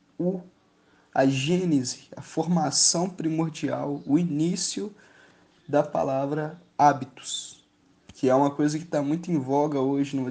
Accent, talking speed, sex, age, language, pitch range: Brazilian, 120 wpm, male, 20-39, Portuguese, 145-175 Hz